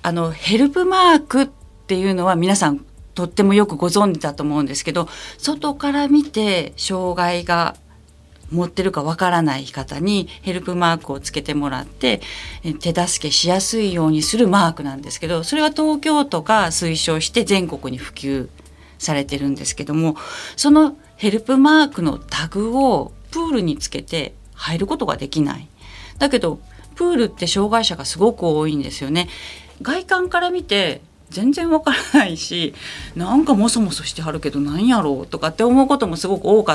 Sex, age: female, 40-59